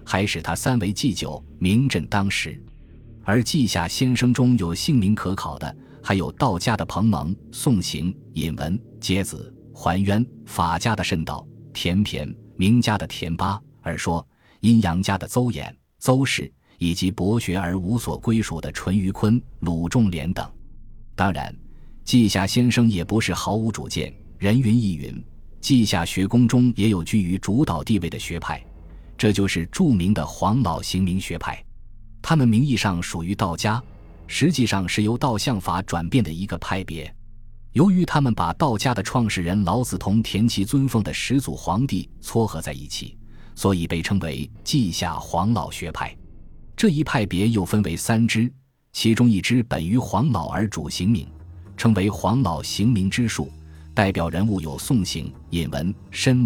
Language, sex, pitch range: Chinese, male, 85-115 Hz